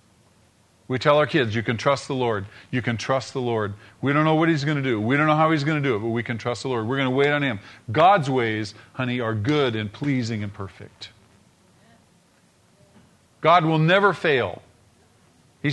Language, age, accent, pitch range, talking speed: English, 50-69, American, 105-145 Hz, 220 wpm